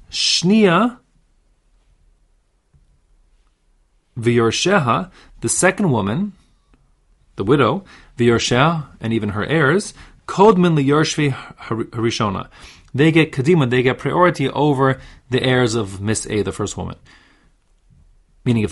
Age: 30-49